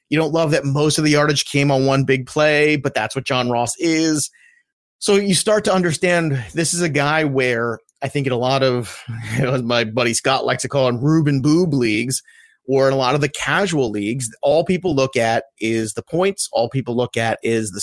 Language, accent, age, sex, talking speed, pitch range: English, American, 30-49, male, 220 wpm, 125-160 Hz